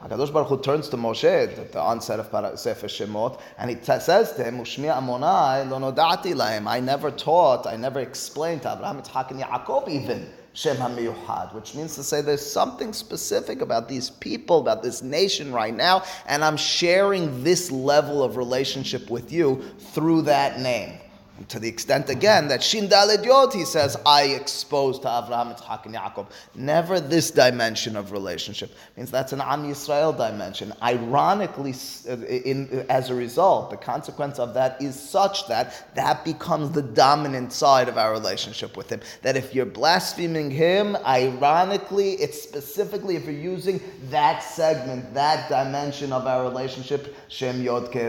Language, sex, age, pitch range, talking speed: English, male, 30-49, 125-165 Hz, 160 wpm